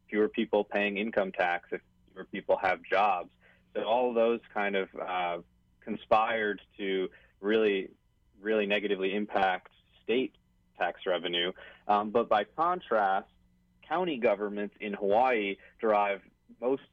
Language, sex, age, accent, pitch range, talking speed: English, male, 30-49, American, 90-105 Hz, 130 wpm